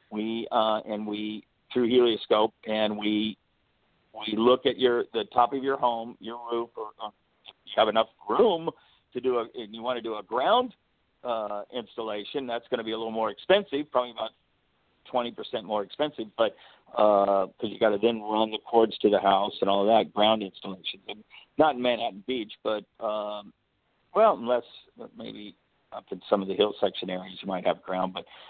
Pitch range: 105-120 Hz